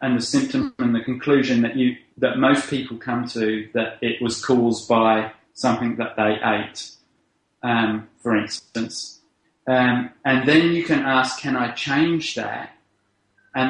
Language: English